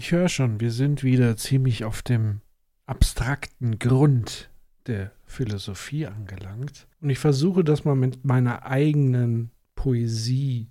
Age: 40-59